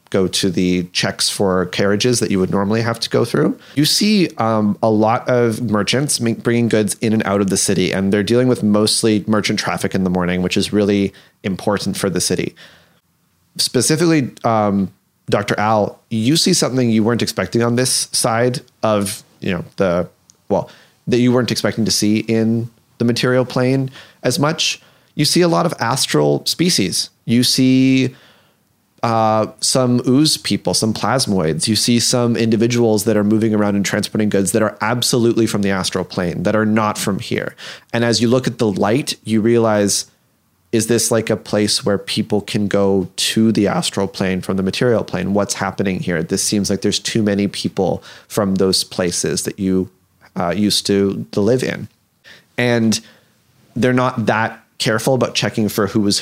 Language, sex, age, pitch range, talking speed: English, male, 30-49, 100-120 Hz, 185 wpm